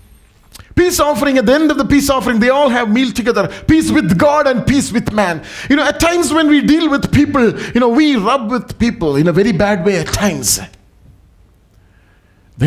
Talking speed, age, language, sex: 215 wpm, 30-49, English, male